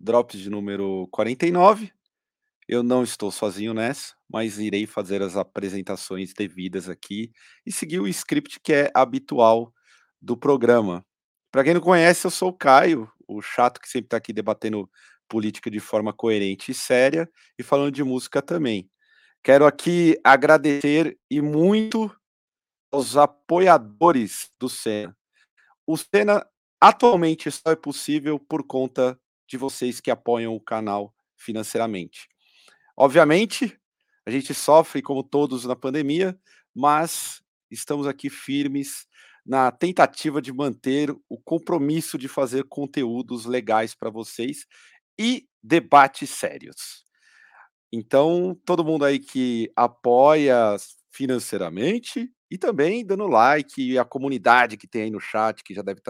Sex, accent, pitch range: male, Brazilian, 110-160 Hz